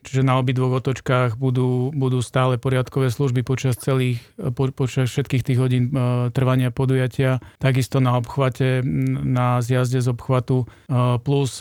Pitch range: 125-135 Hz